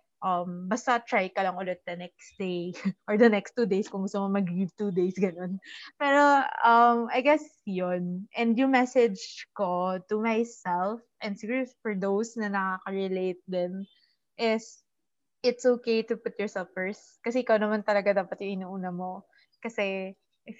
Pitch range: 185-230 Hz